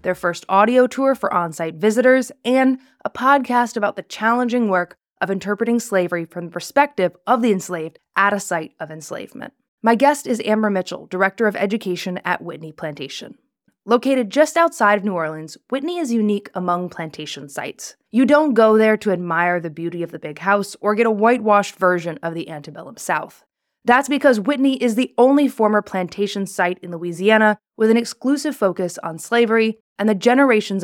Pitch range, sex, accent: 175-240 Hz, female, American